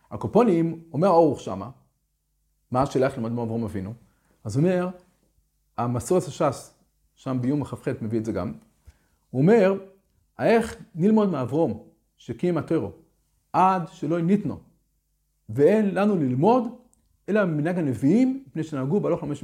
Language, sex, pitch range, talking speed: Hebrew, male, 130-210 Hz, 135 wpm